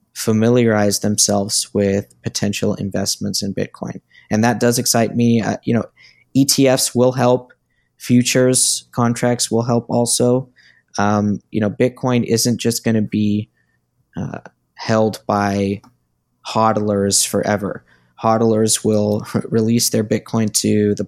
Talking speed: 120 wpm